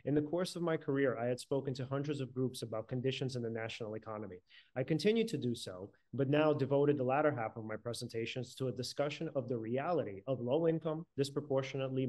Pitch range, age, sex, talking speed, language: 120-145 Hz, 30-49, male, 210 wpm, English